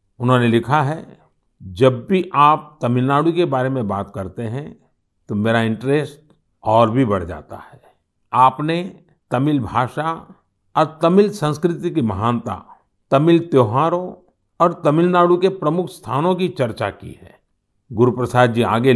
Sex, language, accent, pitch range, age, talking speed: male, Hindi, native, 115-170 Hz, 50-69, 140 wpm